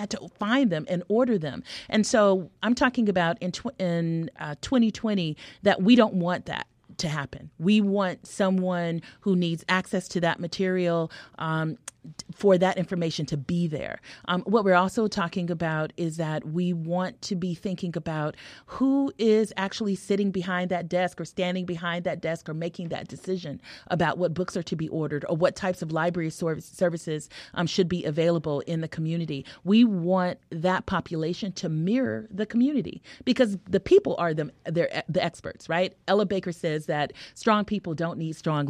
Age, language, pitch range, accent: 30-49, English, 160-195 Hz, American